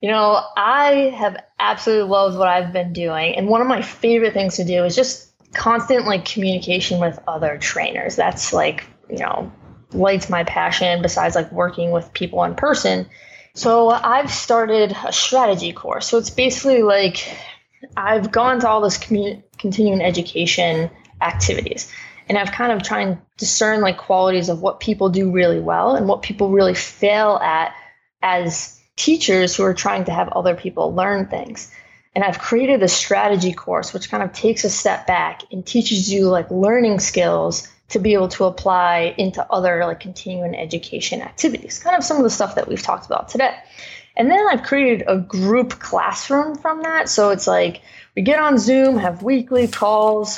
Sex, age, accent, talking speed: female, 20-39, American, 180 wpm